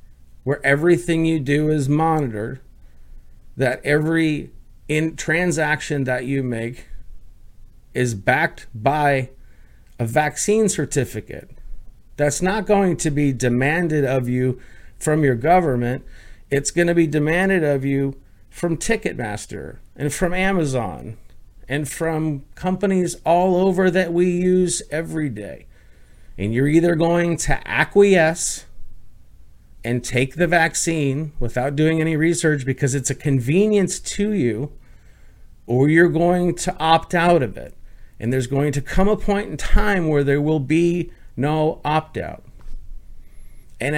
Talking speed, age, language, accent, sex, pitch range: 130 wpm, 50-69, English, American, male, 130-170 Hz